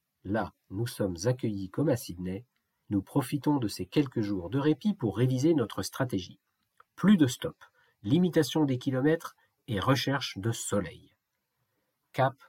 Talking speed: 145 wpm